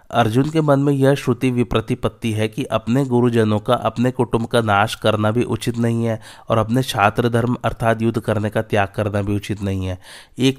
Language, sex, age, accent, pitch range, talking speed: Hindi, male, 30-49, native, 105-120 Hz, 205 wpm